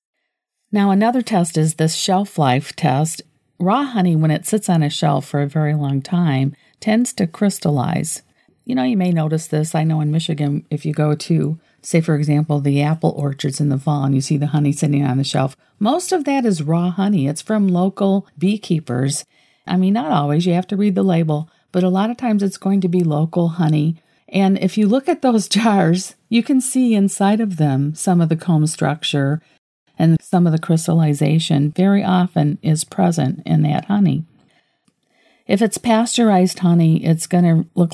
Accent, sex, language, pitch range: American, female, English, 155-195 Hz